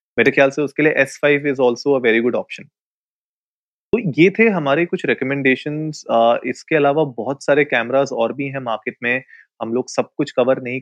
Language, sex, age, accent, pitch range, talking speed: Hindi, male, 30-49, native, 120-140 Hz, 165 wpm